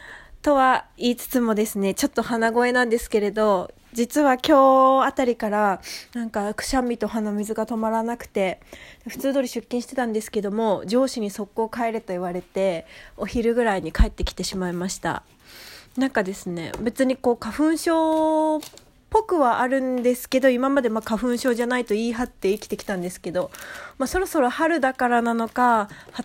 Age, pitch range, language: 20-39, 200-250 Hz, Japanese